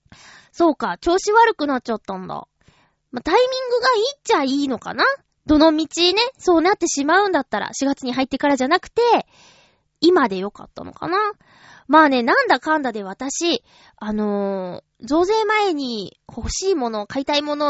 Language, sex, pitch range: Japanese, female, 215-365 Hz